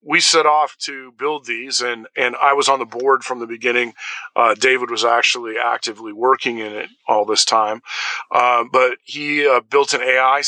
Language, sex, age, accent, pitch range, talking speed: English, male, 40-59, American, 120-135 Hz, 200 wpm